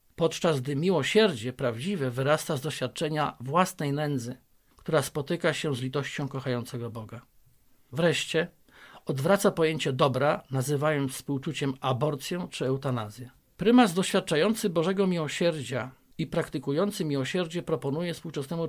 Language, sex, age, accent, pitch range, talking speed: Polish, male, 50-69, native, 135-165 Hz, 110 wpm